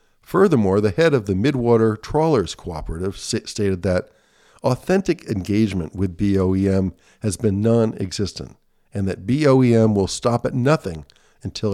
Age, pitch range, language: 50-69, 95-125 Hz, English